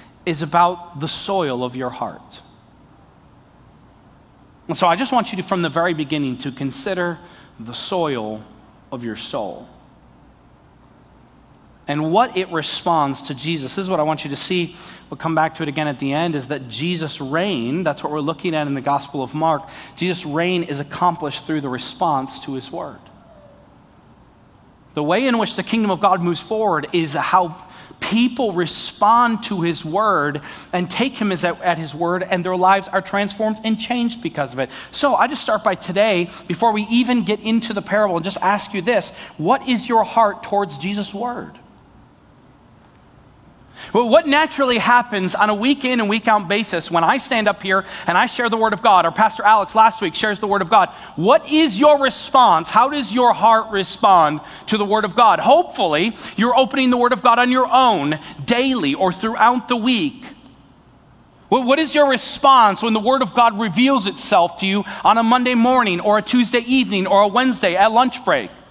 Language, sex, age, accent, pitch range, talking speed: English, male, 40-59, American, 165-235 Hz, 190 wpm